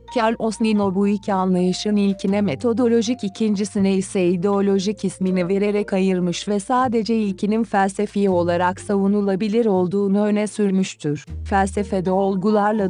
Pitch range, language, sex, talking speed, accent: 185-215 Hz, Turkish, female, 110 wpm, native